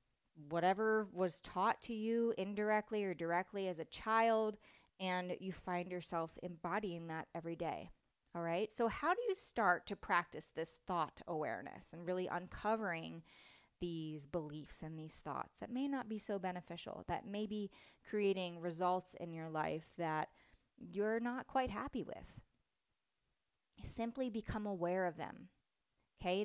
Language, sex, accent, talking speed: English, female, American, 145 wpm